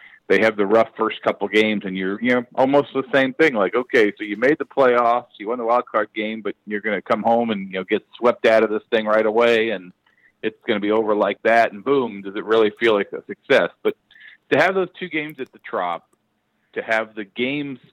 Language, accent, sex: English, American, male